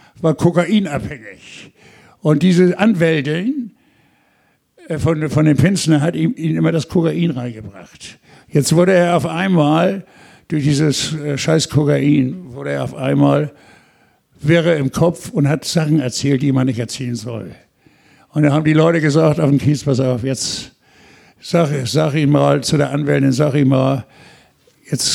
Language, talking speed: German, 155 wpm